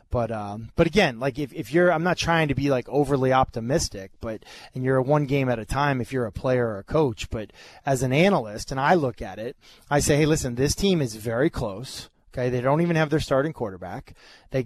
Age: 20-39